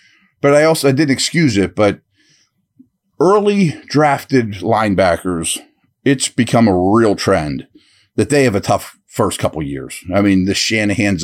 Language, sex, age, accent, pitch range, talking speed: English, male, 40-59, American, 95-125 Hz, 155 wpm